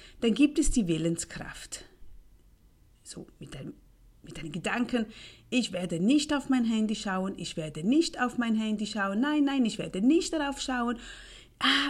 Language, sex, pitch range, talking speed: German, female, 170-270 Hz, 165 wpm